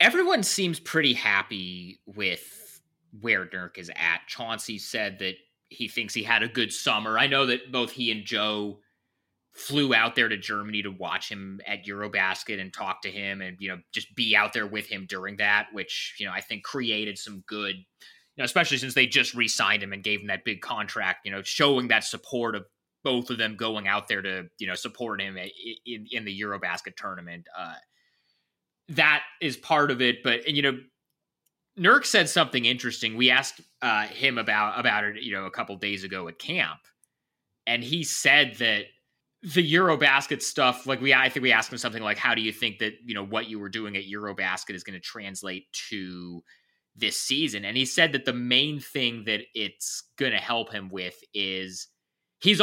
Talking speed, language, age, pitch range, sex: 200 wpm, English, 20-39, 100-130 Hz, male